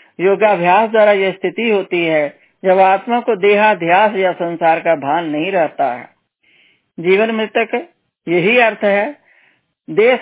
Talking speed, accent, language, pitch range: 145 wpm, native, Hindi, 170-215 Hz